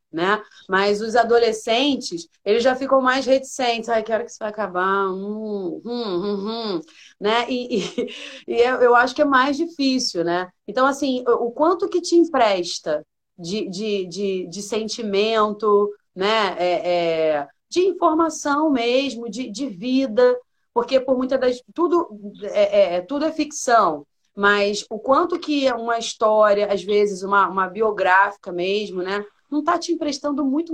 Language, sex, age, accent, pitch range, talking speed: Portuguese, female, 30-49, Brazilian, 205-265 Hz, 155 wpm